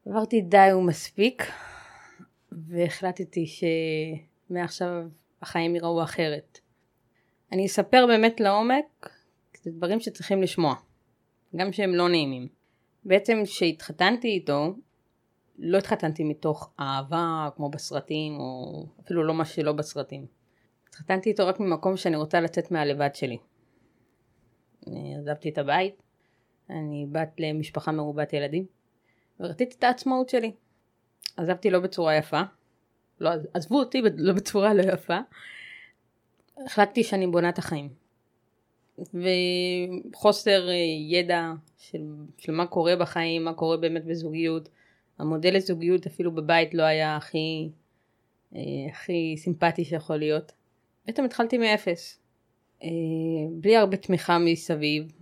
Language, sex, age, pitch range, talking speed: Hebrew, female, 20-39, 150-190 Hz, 110 wpm